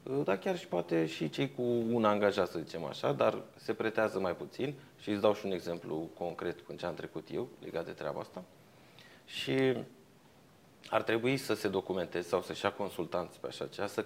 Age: 30-49